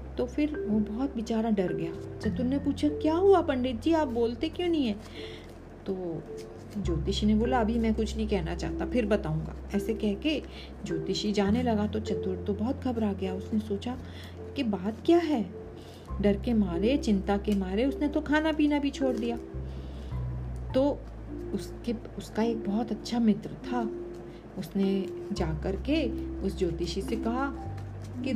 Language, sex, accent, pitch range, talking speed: Hindi, female, native, 195-255 Hz, 165 wpm